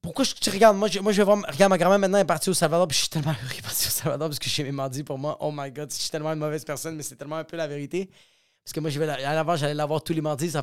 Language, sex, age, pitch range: French, male, 20-39, 145-195 Hz